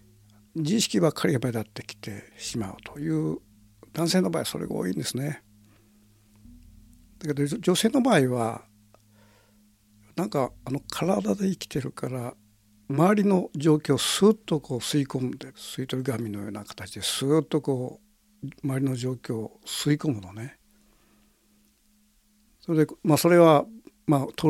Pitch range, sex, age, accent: 110-155 Hz, male, 60-79, native